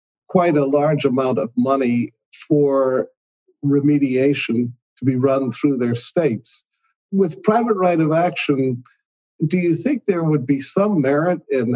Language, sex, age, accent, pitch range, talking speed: English, male, 50-69, American, 125-155 Hz, 145 wpm